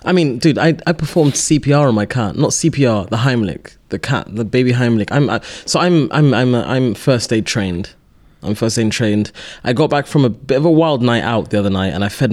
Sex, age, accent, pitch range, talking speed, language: male, 20-39, British, 105-130 Hz, 245 wpm, English